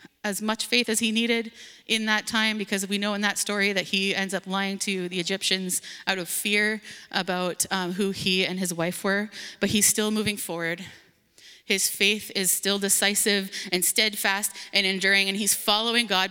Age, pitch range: 20-39, 190-215 Hz